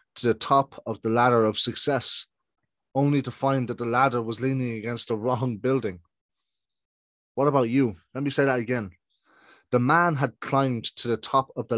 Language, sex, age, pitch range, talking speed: English, male, 30-49, 115-135 Hz, 190 wpm